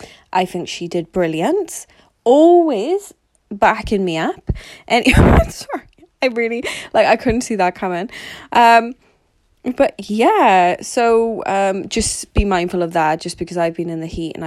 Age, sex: 20-39, female